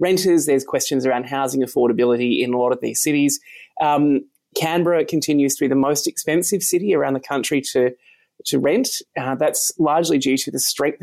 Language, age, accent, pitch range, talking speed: English, 20-39, Australian, 130-170 Hz, 185 wpm